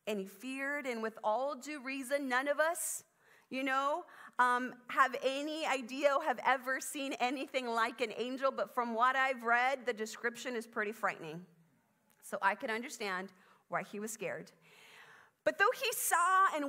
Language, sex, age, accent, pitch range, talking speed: English, female, 40-59, American, 220-295 Hz, 175 wpm